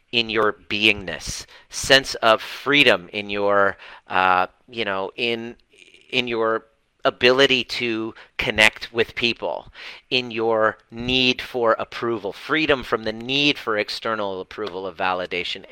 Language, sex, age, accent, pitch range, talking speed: English, male, 40-59, American, 105-125 Hz, 125 wpm